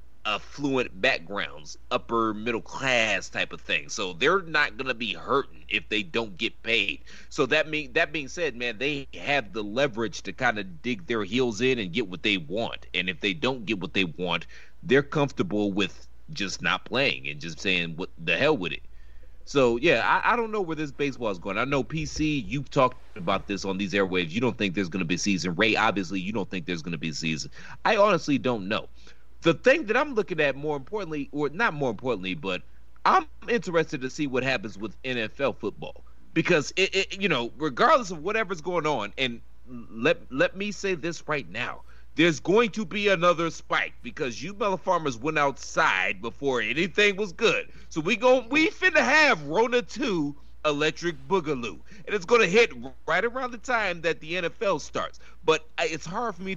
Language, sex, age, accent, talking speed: English, male, 30-49, American, 205 wpm